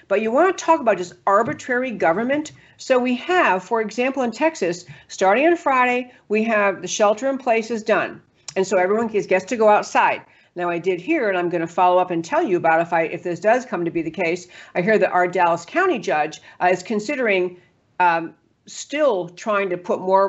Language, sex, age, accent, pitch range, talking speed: English, female, 50-69, American, 180-225 Hz, 215 wpm